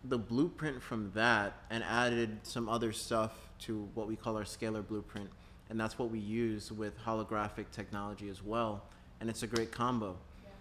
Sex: male